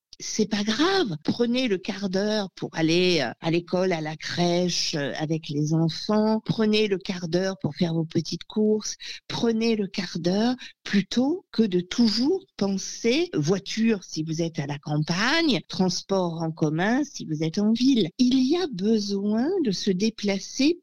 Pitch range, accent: 170-225 Hz, French